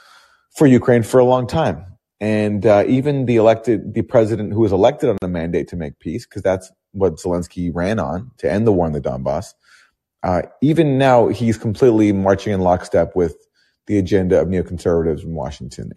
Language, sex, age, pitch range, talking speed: English, male, 30-49, 85-115 Hz, 190 wpm